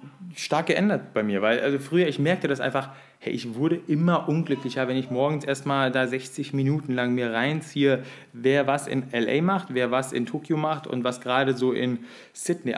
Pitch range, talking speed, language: 120-145 Hz, 190 wpm, German